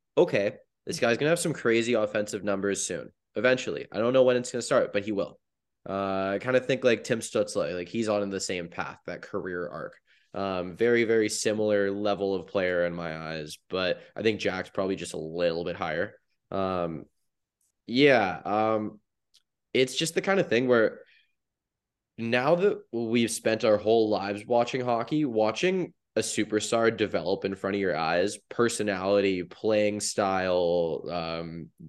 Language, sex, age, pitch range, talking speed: English, male, 20-39, 90-120 Hz, 170 wpm